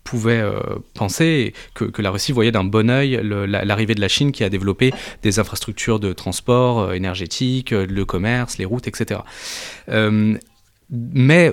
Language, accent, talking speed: French, French, 165 wpm